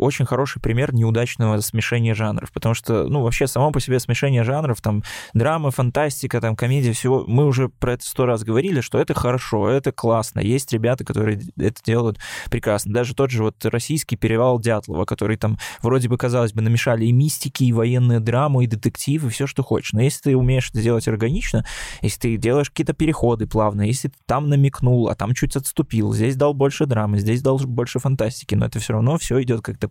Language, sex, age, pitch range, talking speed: Russian, male, 20-39, 115-140 Hz, 200 wpm